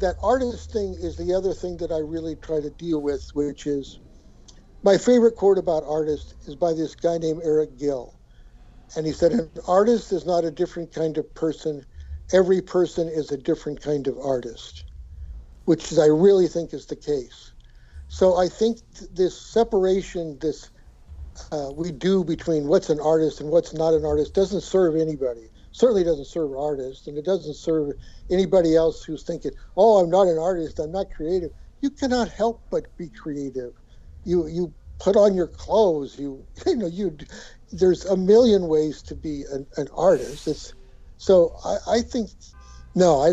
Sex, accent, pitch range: male, American, 140-185 Hz